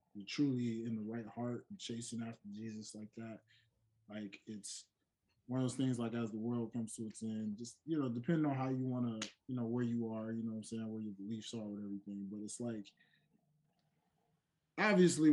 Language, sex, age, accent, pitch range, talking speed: English, male, 20-39, American, 110-155 Hz, 220 wpm